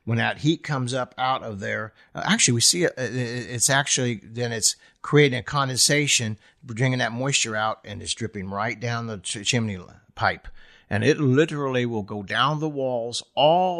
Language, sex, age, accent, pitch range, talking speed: English, male, 50-69, American, 110-140 Hz, 180 wpm